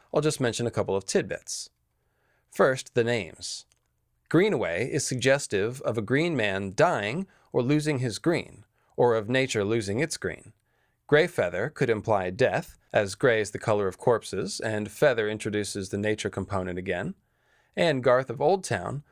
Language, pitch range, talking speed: English, 105-135 Hz, 155 wpm